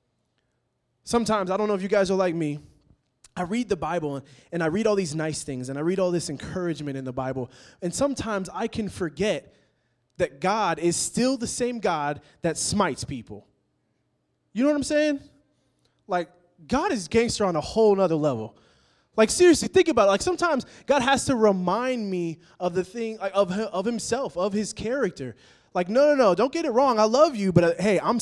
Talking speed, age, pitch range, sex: 200 wpm, 20-39, 140-225 Hz, male